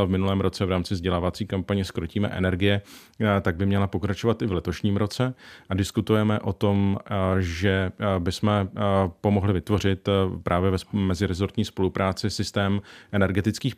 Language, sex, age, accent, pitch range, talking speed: Czech, male, 40-59, native, 95-105 Hz, 135 wpm